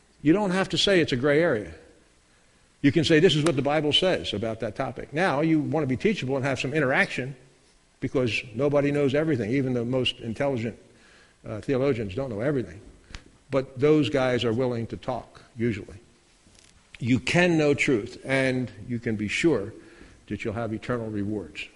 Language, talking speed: English, 180 wpm